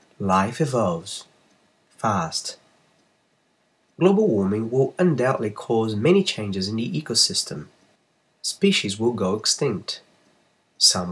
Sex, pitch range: male, 115-170 Hz